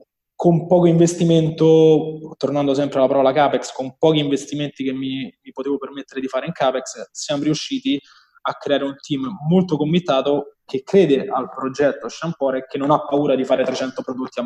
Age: 20-39